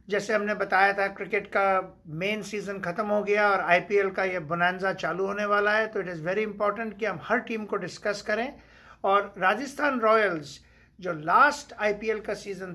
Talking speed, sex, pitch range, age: 190 wpm, male, 195-225 Hz, 50-69